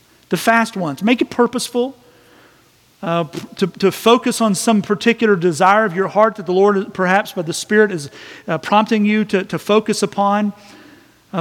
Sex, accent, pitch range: male, American, 185-230 Hz